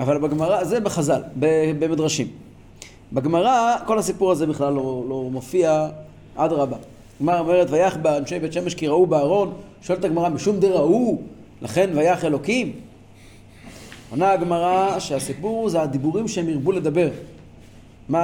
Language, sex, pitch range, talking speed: Hebrew, male, 140-210 Hz, 130 wpm